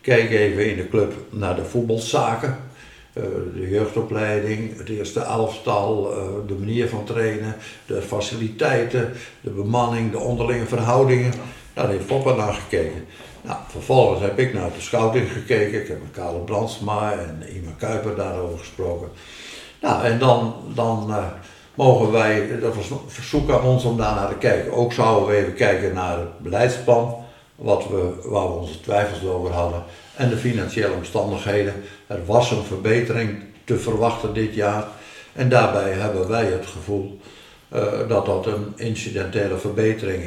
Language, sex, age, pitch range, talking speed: English, male, 60-79, 100-120 Hz, 155 wpm